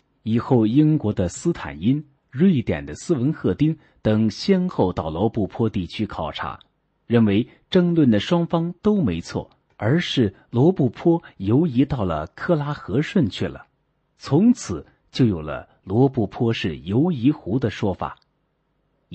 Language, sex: Chinese, male